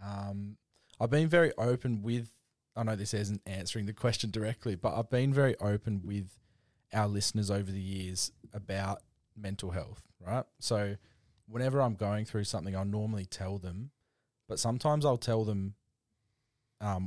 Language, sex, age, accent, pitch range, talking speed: English, male, 20-39, Australian, 100-120 Hz, 160 wpm